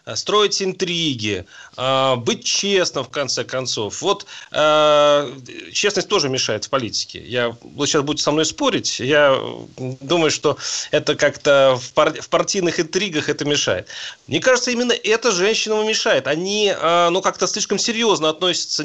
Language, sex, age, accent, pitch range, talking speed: Russian, male, 30-49, native, 155-205 Hz, 130 wpm